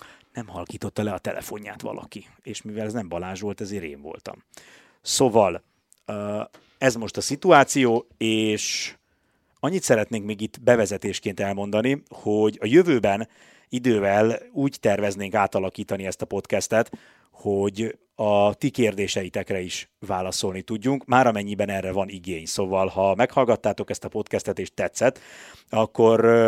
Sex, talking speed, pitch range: male, 130 wpm, 100-115 Hz